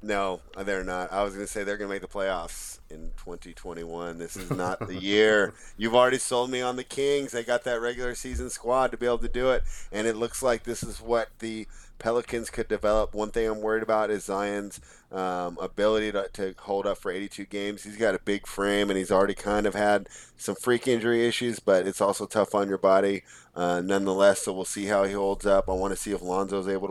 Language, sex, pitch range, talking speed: English, male, 90-105 Hz, 235 wpm